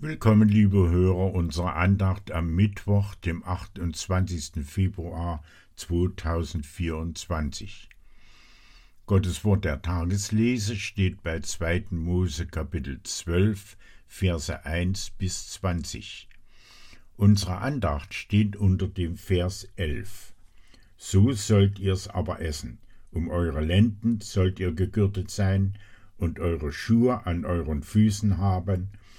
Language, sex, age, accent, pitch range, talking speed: German, male, 60-79, German, 85-105 Hz, 105 wpm